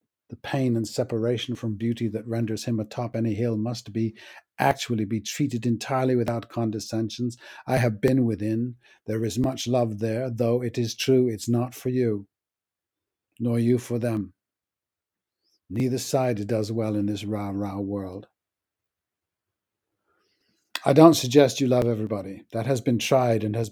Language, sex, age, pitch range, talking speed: English, male, 50-69, 110-130 Hz, 155 wpm